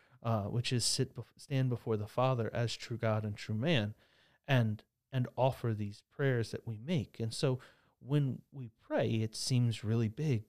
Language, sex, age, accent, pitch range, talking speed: English, male, 30-49, American, 110-130 Hz, 185 wpm